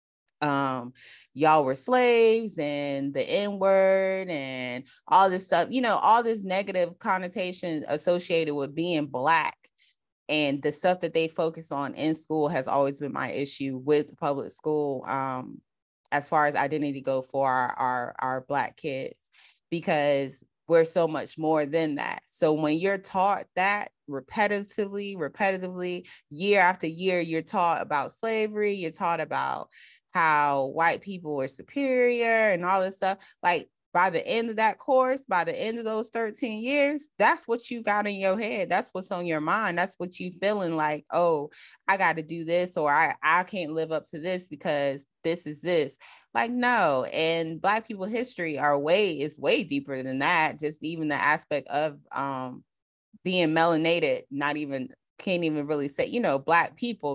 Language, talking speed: English, 170 wpm